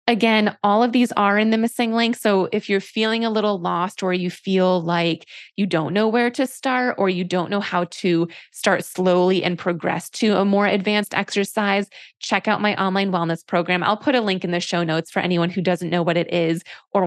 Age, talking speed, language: 20-39, 225 wpm, English